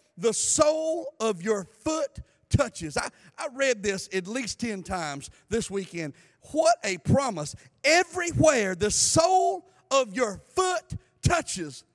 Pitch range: 225-295 Hz